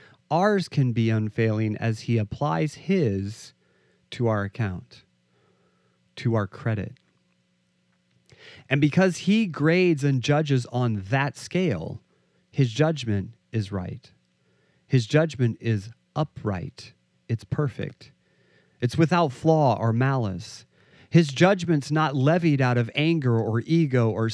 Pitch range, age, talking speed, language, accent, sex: 90-145 Hz, 40-59, 120 wpm, English, American, male